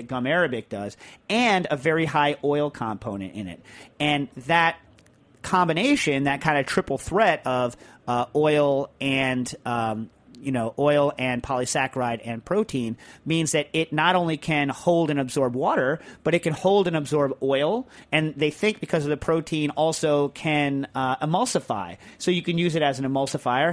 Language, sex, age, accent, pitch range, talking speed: English, male, 40-59, American, 125-155 Hz, 165 wpm